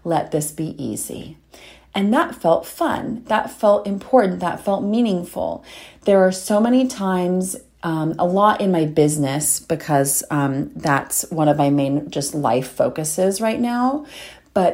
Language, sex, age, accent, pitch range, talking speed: English, female, 30-49, American, 160-200 Hz, 155 wpm